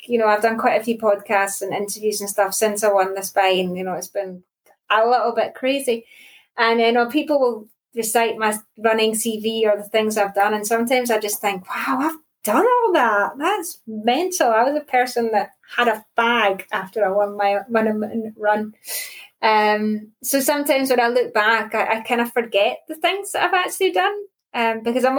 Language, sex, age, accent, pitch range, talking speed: English, female, 20-39, British, 210-255 Hz, 205 wpm